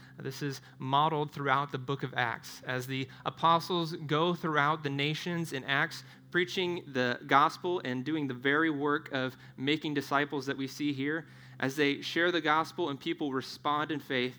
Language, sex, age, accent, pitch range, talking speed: English, male, 30-49, American, 125-150 Hz, 175 wpm